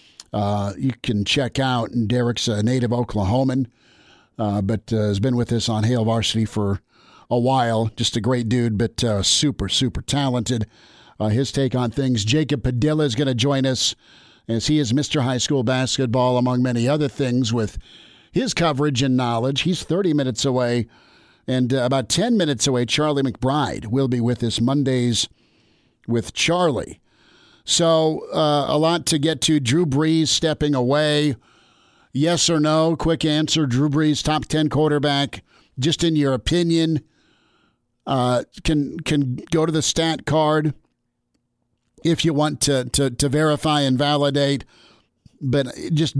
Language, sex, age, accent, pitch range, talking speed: English, male, 50-69, American, 120-150 Hz, 160 wpm